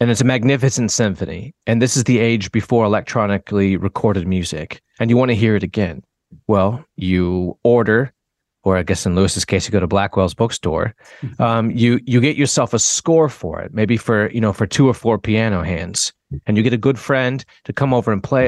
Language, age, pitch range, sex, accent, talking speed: English, 30-49, 100-130 Hz, male, American, 210 wpm